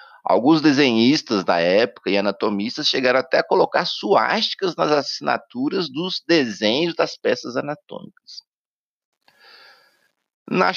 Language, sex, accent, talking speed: Portuguese, male, Brazilian, 105 wpm